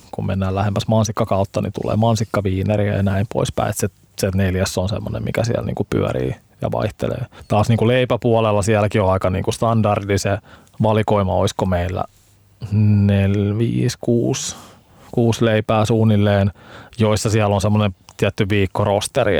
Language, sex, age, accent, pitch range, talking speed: Finnish, male, 20-39, native, 95-110 Hz, 140 wpm